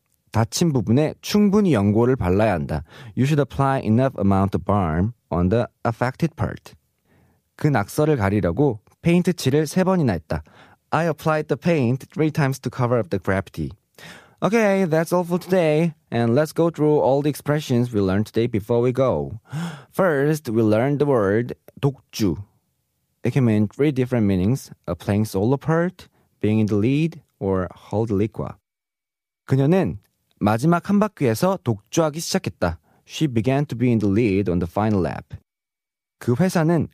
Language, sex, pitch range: Korean, male, 105-155 Hz